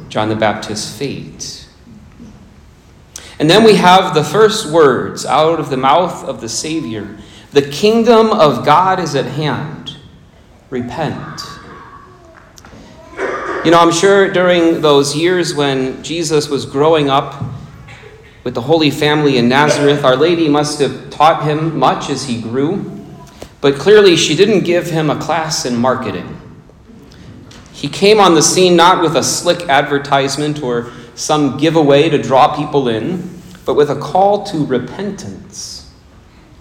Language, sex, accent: English, male, American